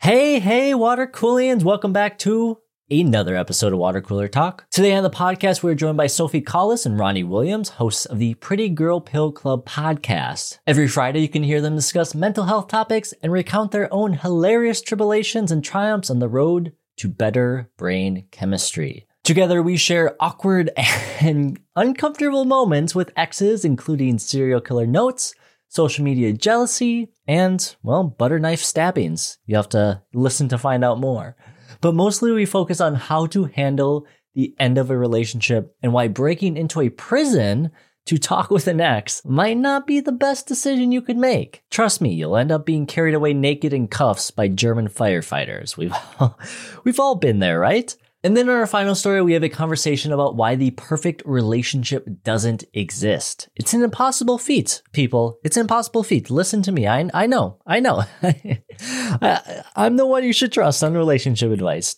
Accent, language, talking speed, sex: American, English, 180 wpm, male